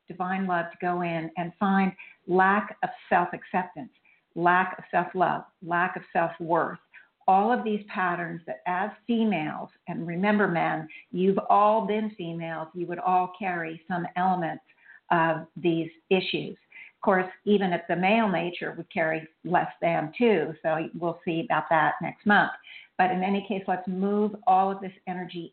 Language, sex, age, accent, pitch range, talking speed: English, female, 50-69, American, 170-195 Hz, 160 wpm